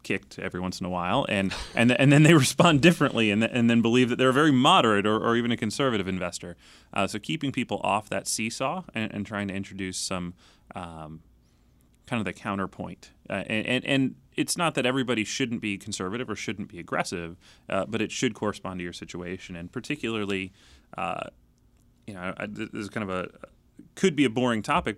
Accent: American